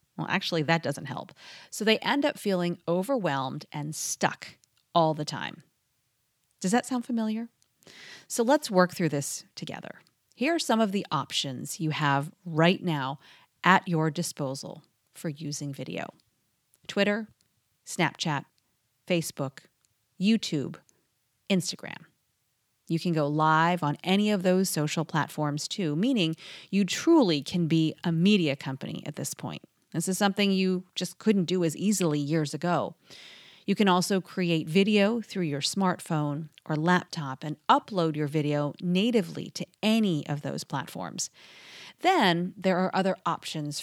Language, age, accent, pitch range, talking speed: English, 30-49, American, 150-200 Hz, 145 wpm